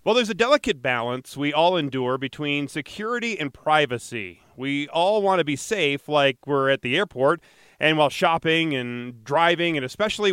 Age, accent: 30-49, American